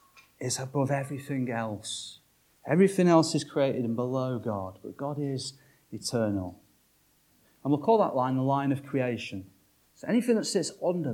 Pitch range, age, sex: 100-140 Hz, 30-49, male